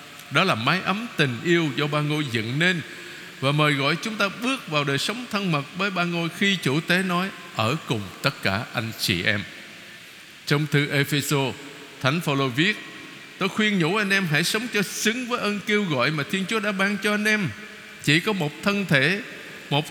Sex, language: male, Vietnamese